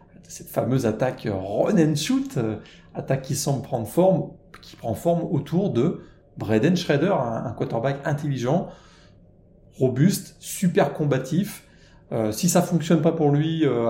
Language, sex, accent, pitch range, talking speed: French, male, French, 120-175 Hz, 145 wpm